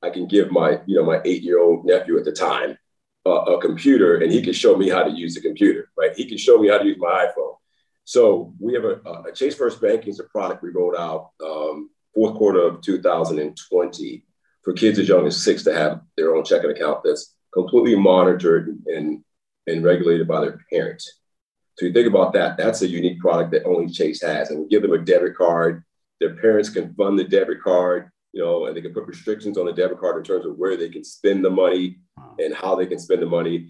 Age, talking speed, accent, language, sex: 40-59, 230 wpm, American, English, male